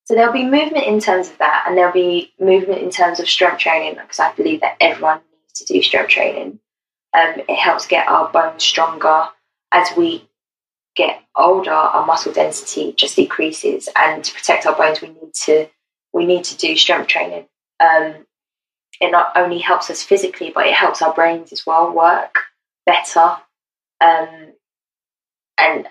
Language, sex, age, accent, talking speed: English, female, 20-39, British, 175 wpm